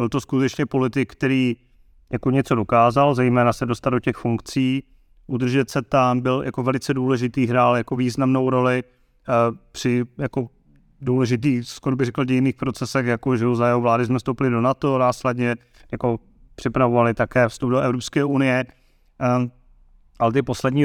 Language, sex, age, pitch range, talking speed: Czech, male, 30-49, 120-145 Hz, 155 wpm